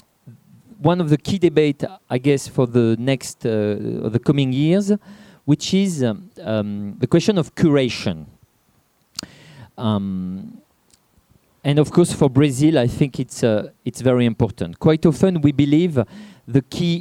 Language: Portuguese